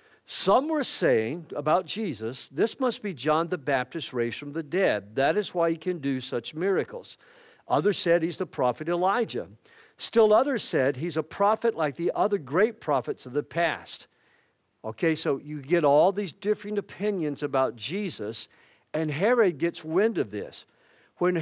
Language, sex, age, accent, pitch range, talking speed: English, male, 50-69, American, 150-205 Hz, 170 wpm